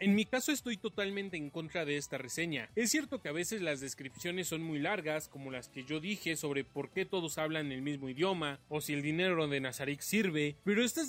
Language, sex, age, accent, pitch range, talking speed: Spanish, male, 30-49, Mexican, 150-210 Hz, 225 wpm